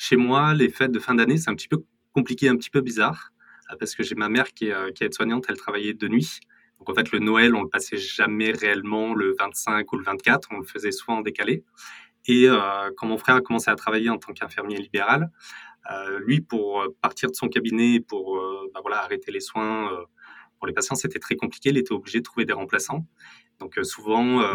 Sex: male